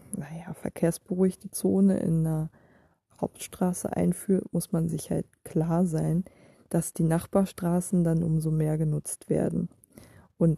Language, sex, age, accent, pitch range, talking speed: German, female, 20-39, German, 165-190 Hz, 125 wpm